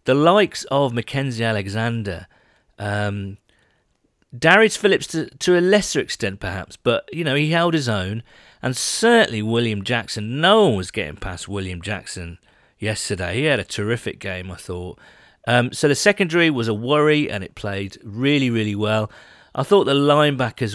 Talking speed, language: 165 wpm, English